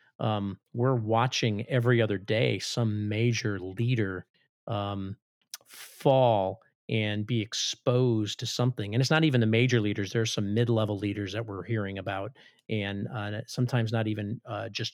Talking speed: 155 wpm